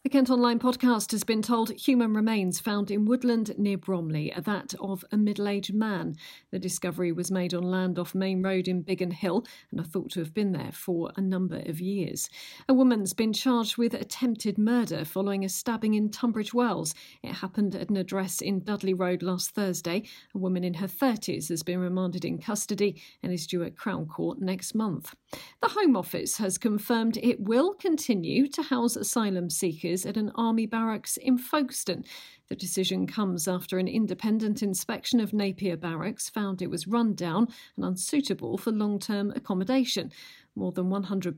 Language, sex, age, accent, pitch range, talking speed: English, female, 40-59, British, 180-225 Hz, 185 wpm